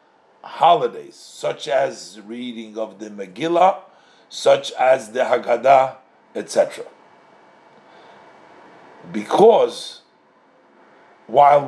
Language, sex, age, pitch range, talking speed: English, male, 50-69, 125-200 Hz, 70 wpm